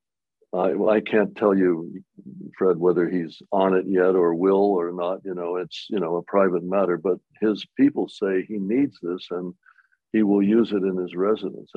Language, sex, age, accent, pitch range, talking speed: English, male, 60-79, American, 90-105 Hz, 195 wpm